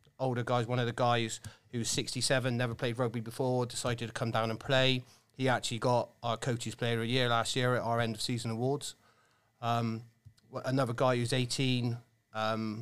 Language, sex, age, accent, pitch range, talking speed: English, male, 30-49, British, 115-130 Hz, 190 wpm